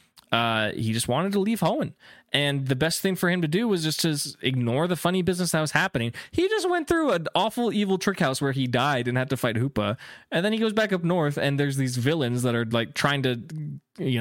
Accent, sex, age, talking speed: American, male, 20-39, 255 wpm